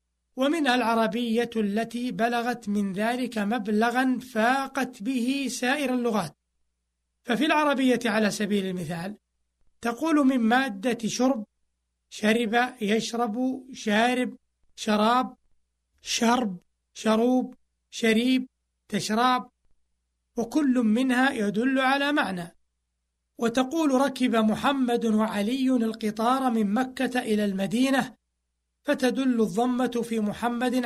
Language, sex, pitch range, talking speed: Arabic, male, 210-255 Hz, 90 wpm